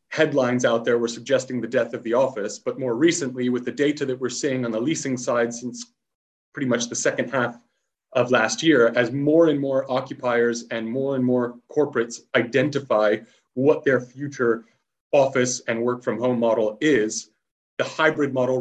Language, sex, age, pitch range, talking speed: English, male, 30-49, 115-135 Hz, 180 wpm